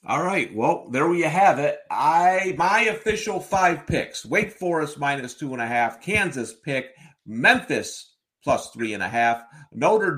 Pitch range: 140-185 Hz